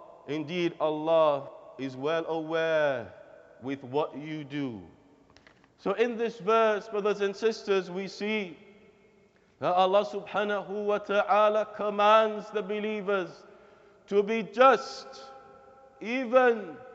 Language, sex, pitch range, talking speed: English, male, 180-220 Hz, 105 wpm